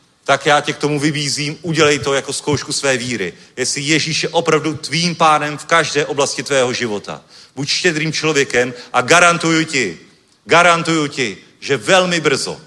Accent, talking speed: native, 160 wpm